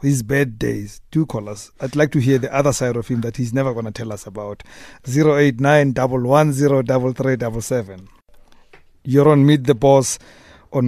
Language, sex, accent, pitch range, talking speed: English, male, South African, 115-140 Hz, 170 wpm